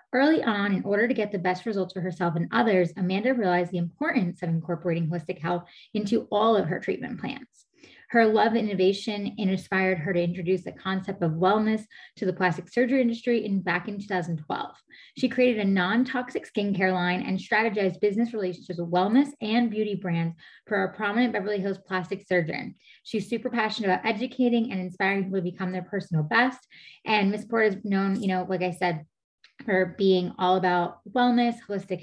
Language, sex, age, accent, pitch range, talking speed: English, female, 20-39, American, 185-220 Hz, 185 wpm